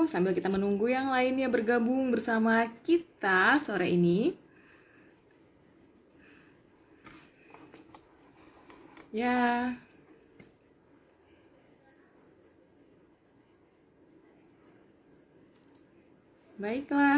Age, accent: 20-39, native